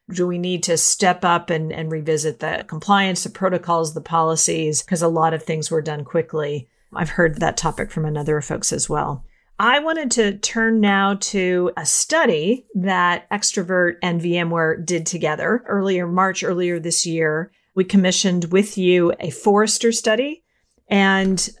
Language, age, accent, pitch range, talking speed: English, 40-59, American, 165-210 Hz, 165 wpm